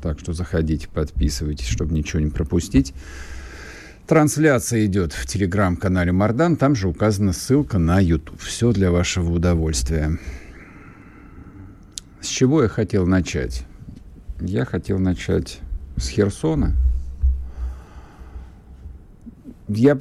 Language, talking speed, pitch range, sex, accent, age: Russian, 100 wpm, 85-105 Hz, male, native, 50-69